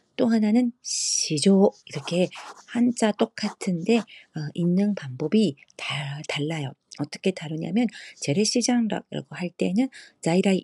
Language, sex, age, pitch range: Korean, female, 40-59, 150-205 Hz